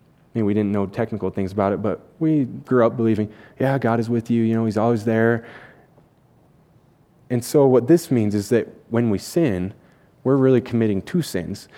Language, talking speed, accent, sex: English, 190 wpm, American, male